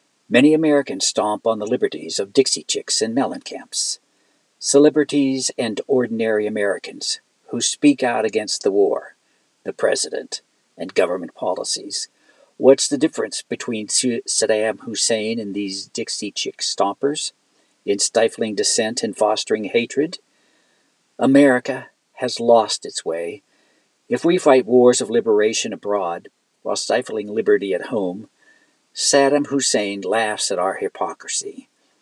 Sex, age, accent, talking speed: male, 60-79, American, 125 wpm